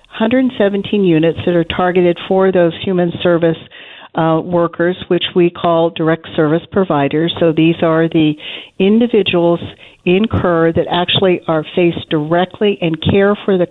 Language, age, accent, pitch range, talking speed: English, 50-69, American, 160-185 Hz, 145 wpm